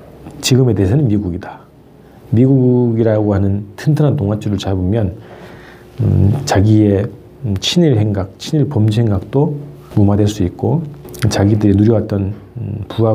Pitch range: 100-140 Hz